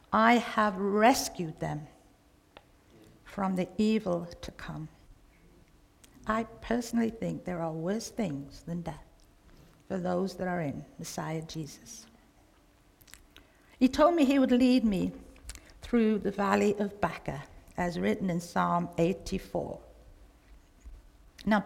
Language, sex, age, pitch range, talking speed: English, female, 60-79, 165-220 Hz, 120 wpm